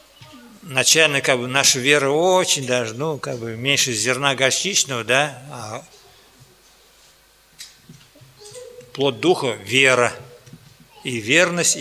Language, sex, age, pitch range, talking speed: Russian, male, 50-69, 125-155 Hz, 105 wpm